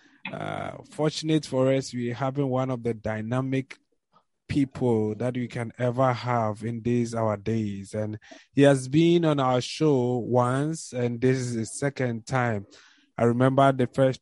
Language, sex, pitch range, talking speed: English, male, 115-140 Hz, 165 wpm